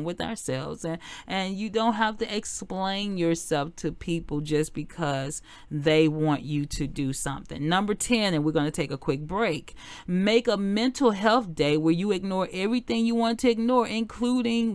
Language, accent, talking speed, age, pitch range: English, American, 180 wpm, 40-59, 150-195 Hz